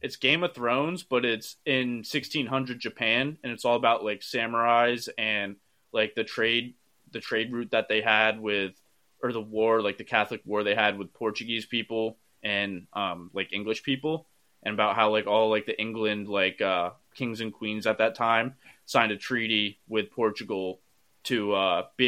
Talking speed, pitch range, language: 180 wpm, 105-120 Hz, English